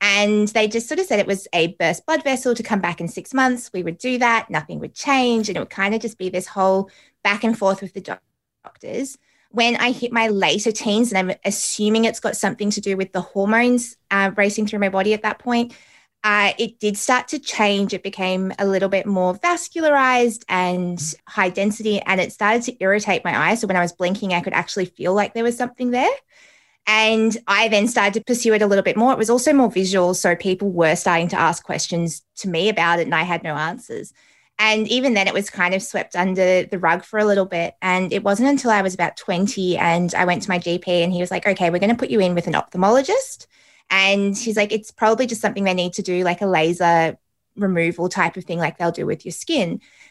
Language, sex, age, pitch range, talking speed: English, female, 20-39, 185-225 Hz, 240 wpm